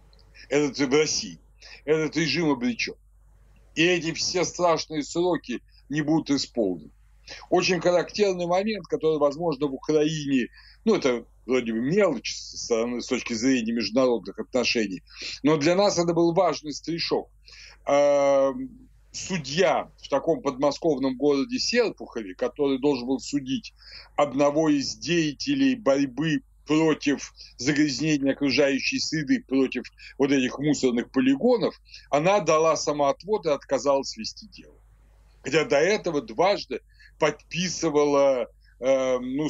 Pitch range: 135-170 Hz